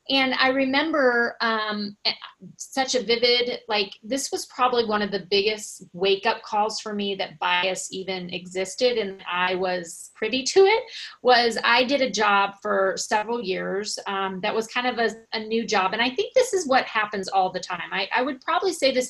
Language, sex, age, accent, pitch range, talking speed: English, female, 30-49, American, 195-250 Hz, 200 wpm